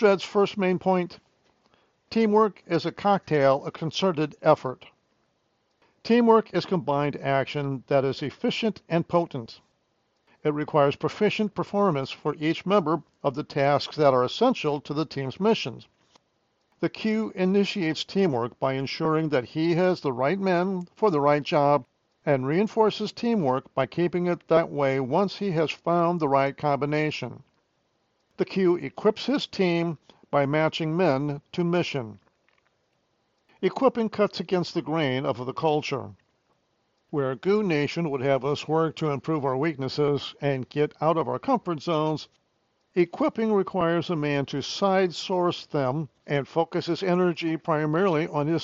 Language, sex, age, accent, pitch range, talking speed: English, male, 50-69, American, 140-185 Hz, 145 wpm